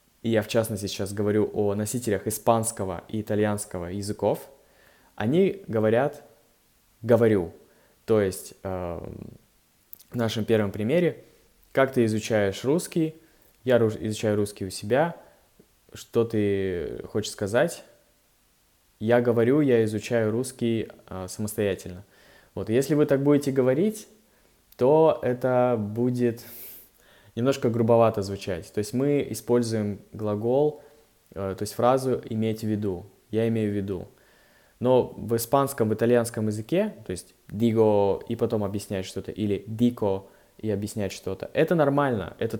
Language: Russian